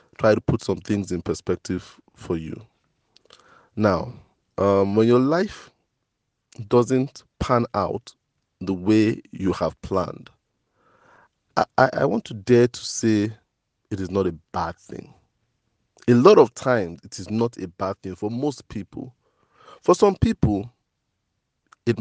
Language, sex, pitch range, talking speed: English, male, 95-125 Hz, 145 wpm